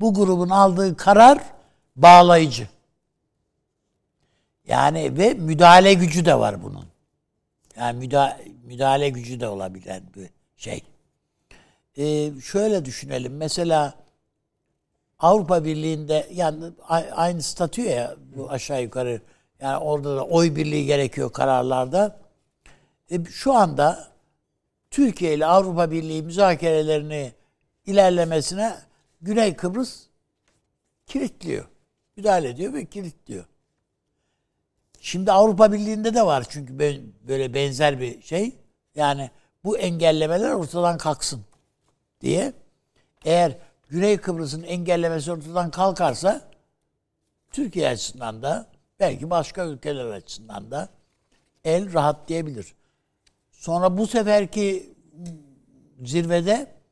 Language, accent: Turkish, native